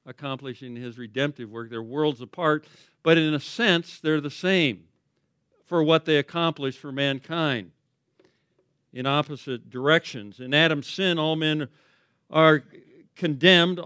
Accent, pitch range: American, 130-165 Hz